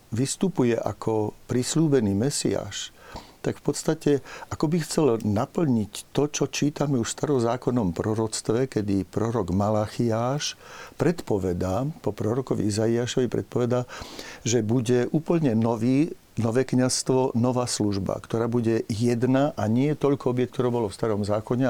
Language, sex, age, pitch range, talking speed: Slovak, male, 60-79, 110-130 Hz, 125 wpm